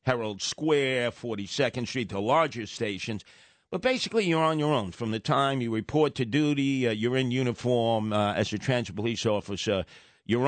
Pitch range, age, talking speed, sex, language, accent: 110-140 Hz, 50-69, 175 wpm, male, English, American